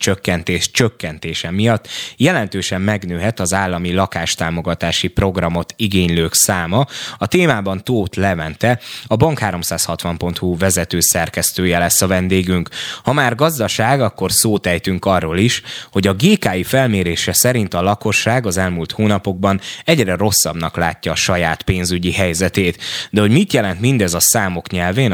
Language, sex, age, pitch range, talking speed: Hungarian, male, 20-39, 85-110 Hz, 130 wpm